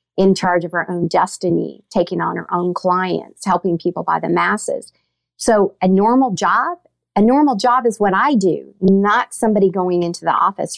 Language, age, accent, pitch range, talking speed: English, 50-69, American, 175-205 Hz, 185 wpm